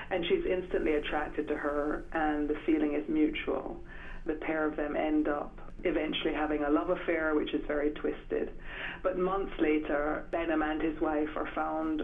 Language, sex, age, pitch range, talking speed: English, female, 30-49, 150-160 Hz, 175 wpm